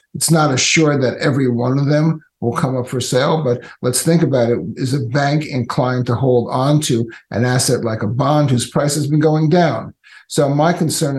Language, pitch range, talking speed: English, 120-150 Hz, 215 wpm